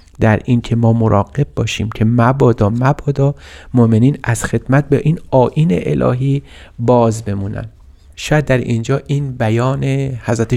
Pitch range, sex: 105-130 Hz, male